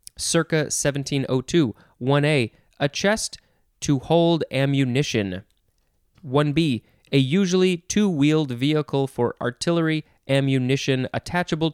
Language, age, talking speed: English, 20-39, 90 wpm